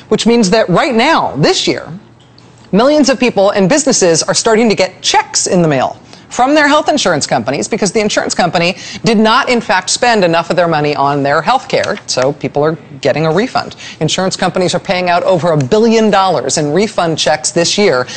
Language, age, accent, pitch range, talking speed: English, 40-59, American, 170-225 Hz, 205 wpm